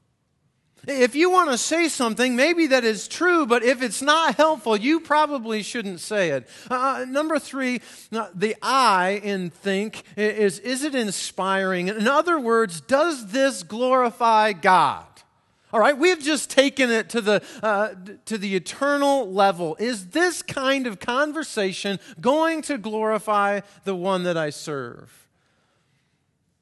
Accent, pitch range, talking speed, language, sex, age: American, 145-240 Hz, 145 wpm, English, male, 40-59